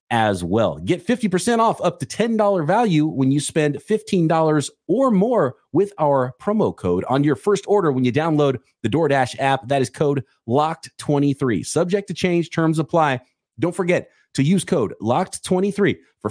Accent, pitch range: American, 105-170 Hz